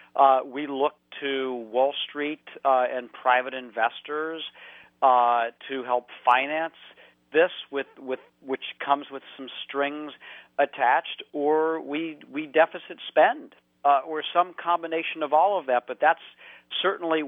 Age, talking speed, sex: 50-69, 135 wpm, male